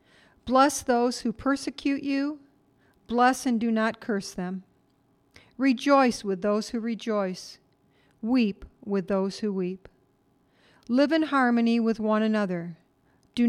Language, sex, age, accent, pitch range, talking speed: English, female, 50-69, American, 200-245 Hz, 125 wpm